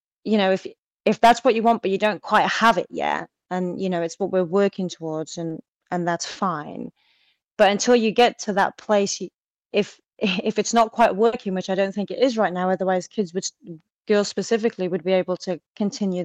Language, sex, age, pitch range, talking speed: English, female, 30-49, 180-210 Hz, 215 wpm